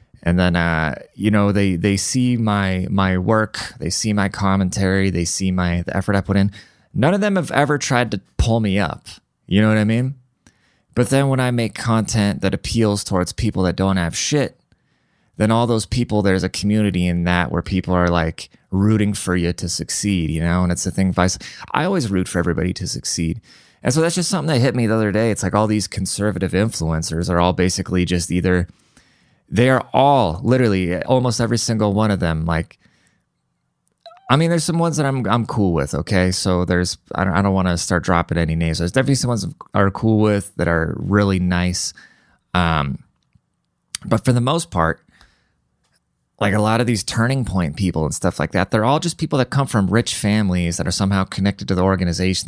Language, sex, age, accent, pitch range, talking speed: English, male, 20-39, American, 90-115 Hz, 215 wpm